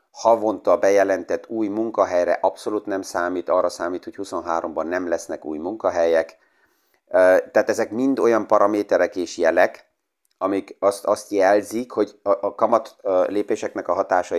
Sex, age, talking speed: male, 30-49, 130 wpm